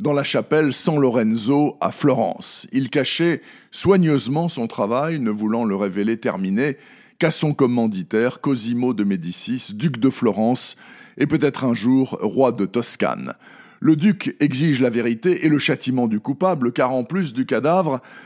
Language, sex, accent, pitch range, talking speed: French, male, French, 120-160 Hz, 160 wpm